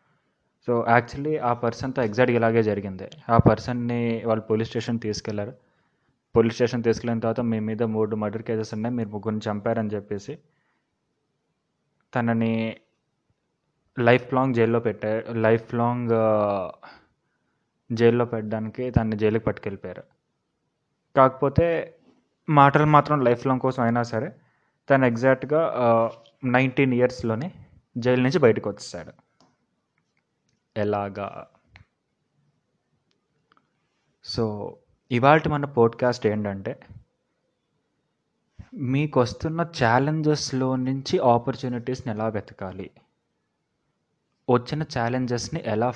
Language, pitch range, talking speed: Telugu, 110-130 Hz, 70 wpm